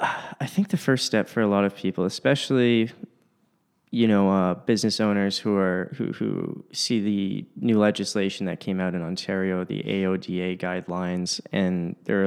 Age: 20-39